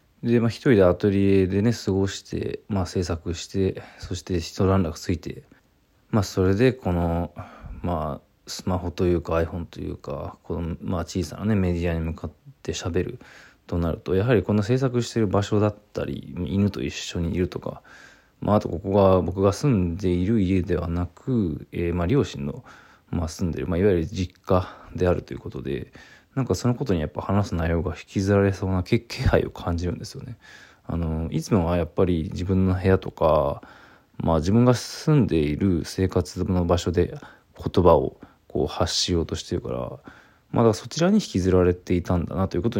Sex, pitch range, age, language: male, 85-110 Hz, 20-39, Japanese